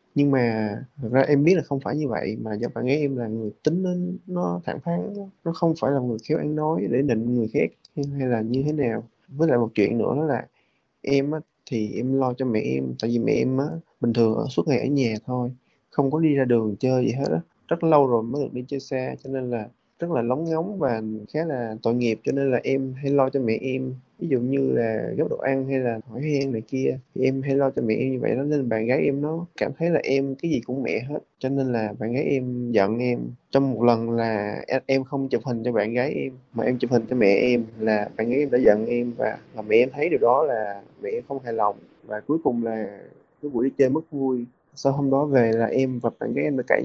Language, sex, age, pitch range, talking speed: Vietnamese, male, 20-39, 120-145 Hz, 270 wpm